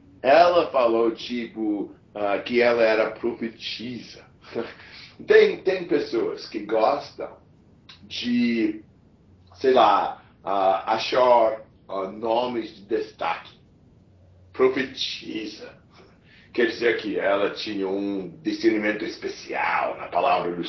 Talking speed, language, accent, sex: 100 wpm, English, Brazilian, male